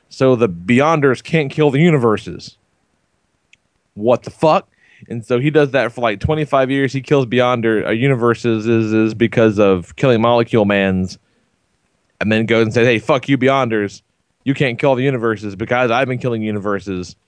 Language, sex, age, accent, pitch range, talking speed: English, male, 30-49, American, 105-135 Hz, 175 wpm